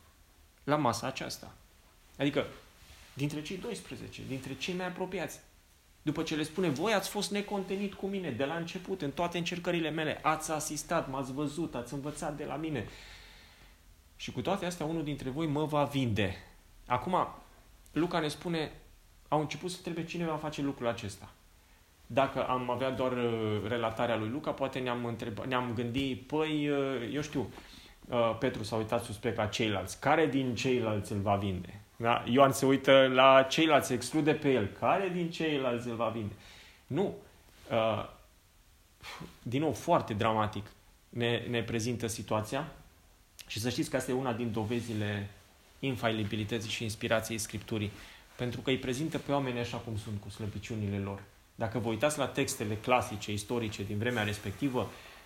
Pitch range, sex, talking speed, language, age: 105-145 Hz, male, 160 wpm, Romanian, 30-49